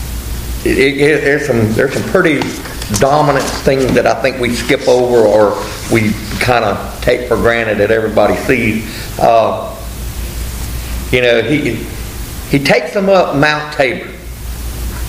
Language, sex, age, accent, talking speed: English, male, 50-69, American, 140 wpm